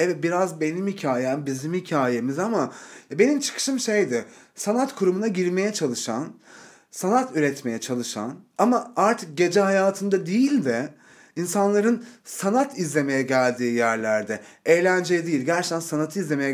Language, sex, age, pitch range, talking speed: Turkish, male, 30-49, 130-185 Hz, 120 wpm